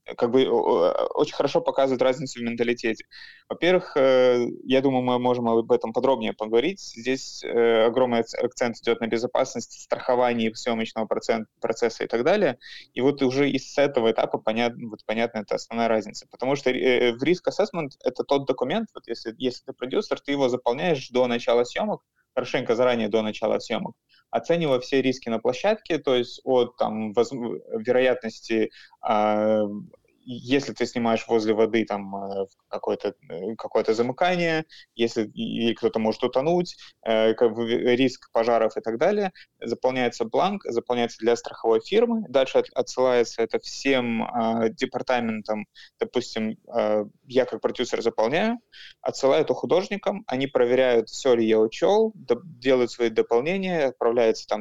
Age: 20-39